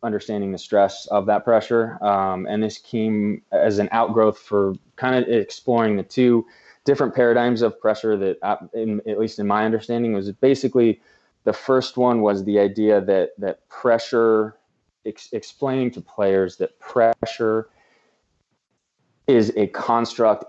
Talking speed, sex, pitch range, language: 145 wpm, male, 95-115 Hz, English